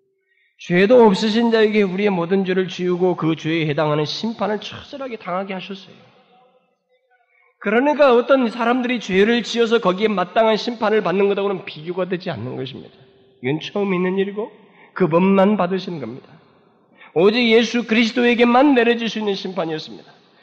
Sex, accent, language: male, native, Korean